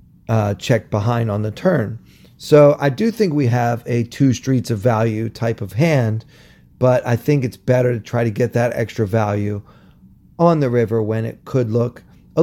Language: English